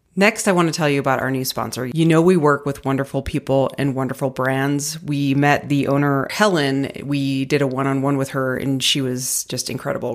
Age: 30-49